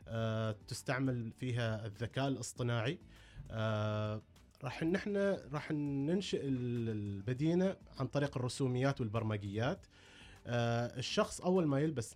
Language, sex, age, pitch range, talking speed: Arabic, male, 30-49, 115-145 Hz, 100 wpm